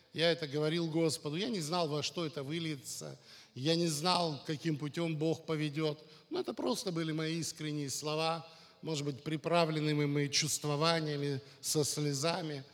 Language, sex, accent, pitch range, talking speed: Russian, male, native, 130-165 Hz, 150 wpm